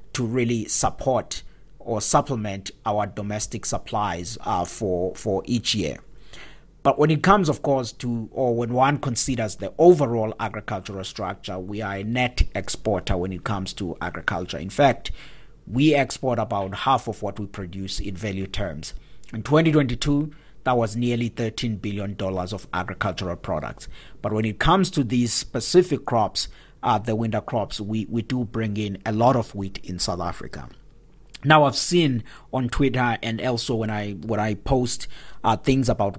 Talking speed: 165 wpm